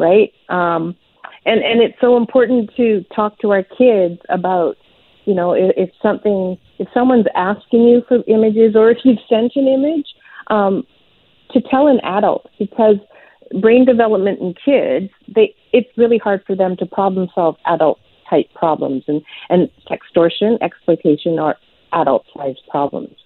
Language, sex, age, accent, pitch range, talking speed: English, female, 40-59, American, 175-225 Hz, 155 wpm